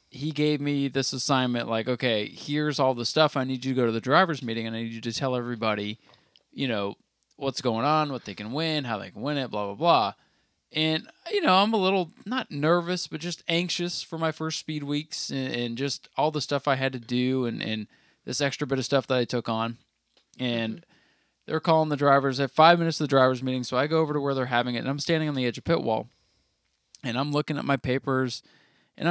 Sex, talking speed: male, 245 wpm